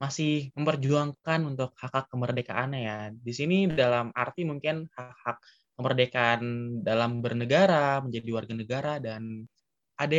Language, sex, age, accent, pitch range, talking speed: Indonesian, male, 20-39, native, 120-145 Hz, 120 wpm